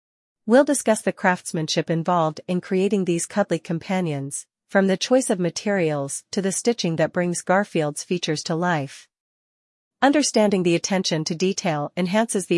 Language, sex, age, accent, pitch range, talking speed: English, female, 40-59, American, 165-200 Hz, 150 wpm